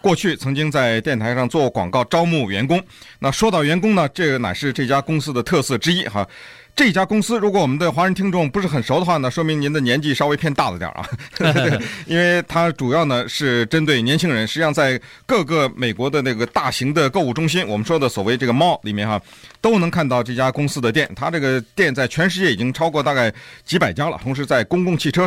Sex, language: male, Chinese